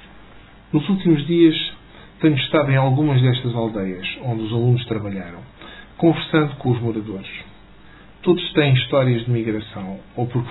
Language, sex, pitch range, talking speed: Portuguese, male, 115-155 Hz, 135 wpm